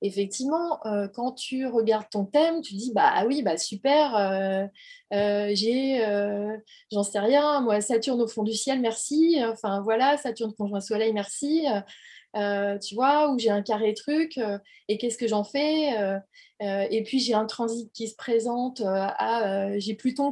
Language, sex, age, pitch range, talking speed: French, female, 20-39, 205-265 Hz, 185 wpm